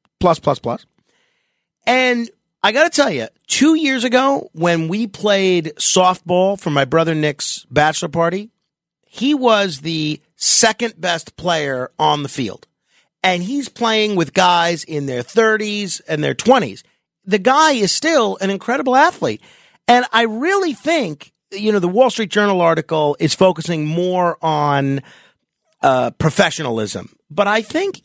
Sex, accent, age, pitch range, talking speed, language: male, American, 40-59, 155-225 Hz, 150 wpm, English